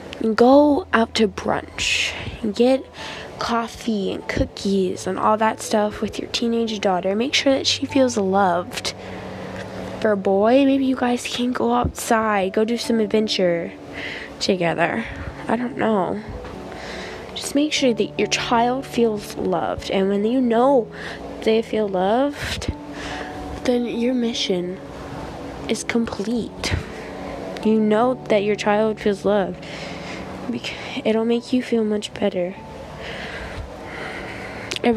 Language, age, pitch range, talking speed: Czech, 10-29, 195-235 Hz, 125 wpm